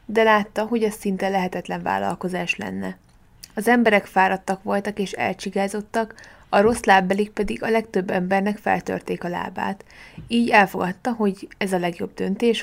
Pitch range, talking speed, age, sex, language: 185-220 Hz, 145 wpm, 20-39, female, Hungarian